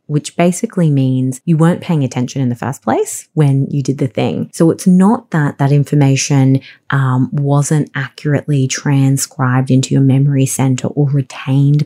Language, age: English, 20-39